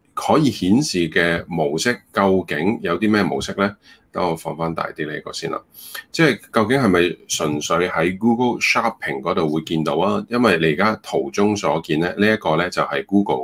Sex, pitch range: male, 80-105 Hz